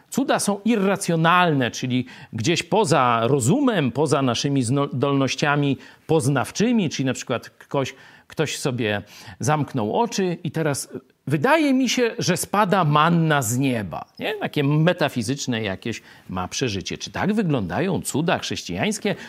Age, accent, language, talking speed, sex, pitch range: 50-69, native, Polish, 120 wpm, male, 140-220 Hz